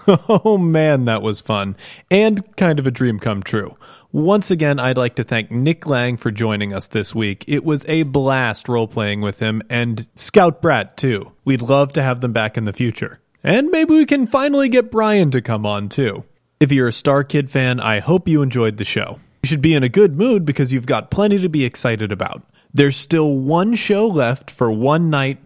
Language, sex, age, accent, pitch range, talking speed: English, male, 20-39, American, 120-160 Hz, 215 wpm